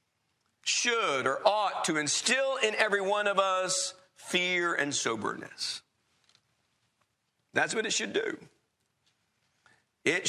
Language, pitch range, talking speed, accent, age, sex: English, 145-210 Hz, 110 wpm, American, 50-69, male